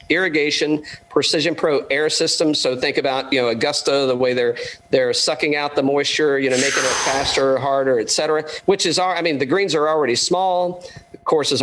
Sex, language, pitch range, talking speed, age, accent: male, English, 130-170 Hz, 195 wpm, 50-69, American